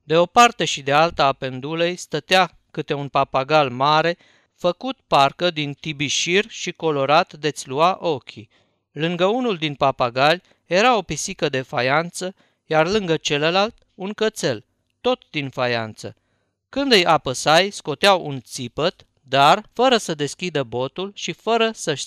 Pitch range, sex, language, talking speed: 135-175 Hz, male, Romanian, 145 wpm